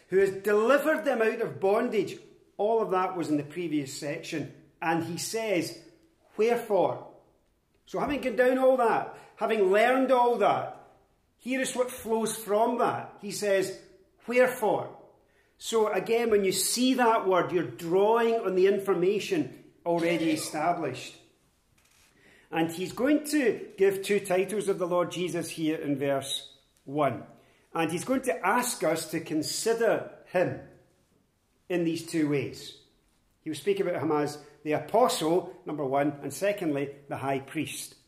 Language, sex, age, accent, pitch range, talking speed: English, male, 40-59, British, 155-215 Hz, 150 wpm